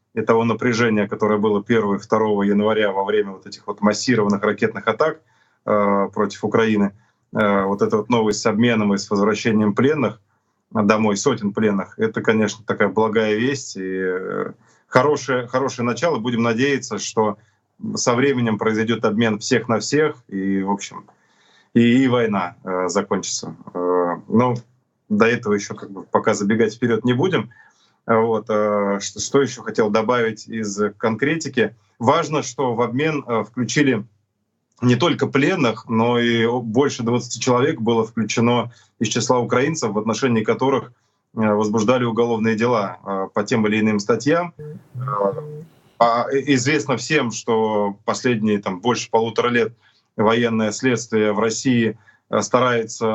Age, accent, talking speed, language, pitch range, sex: 20-39, native, 140 wpm, Russian, 105-125 Hz, male